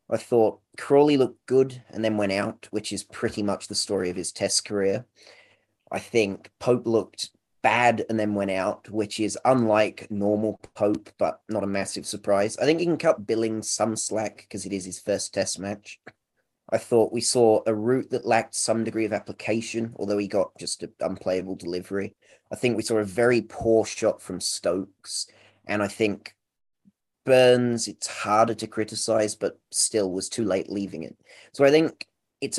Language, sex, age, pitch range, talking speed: English, male, 30-49, 100-120 Hz, 185 wpm